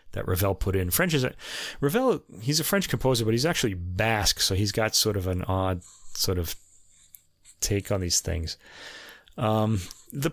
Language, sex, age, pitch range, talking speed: English, male, 30-49, 95-115 Hz, 180 wpm